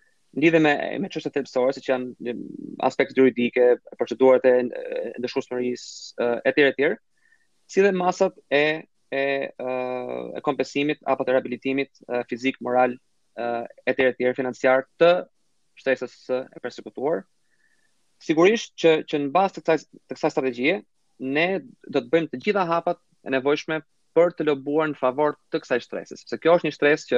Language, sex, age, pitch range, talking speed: English, male, 20-39, 125-160 Hz, 155 wpm